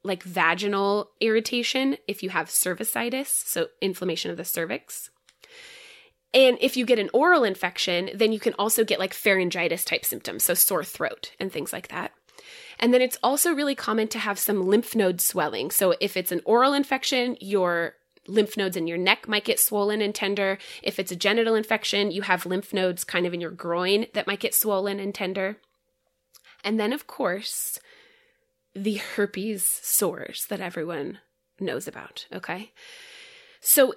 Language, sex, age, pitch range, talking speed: English, female, 20-39, 190-245 Hz, 170 wpm